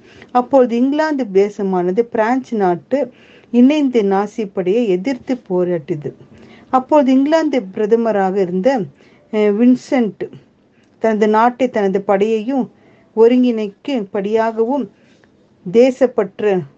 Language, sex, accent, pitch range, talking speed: Tamil, female, native, 195-255 Hz, 70 wpm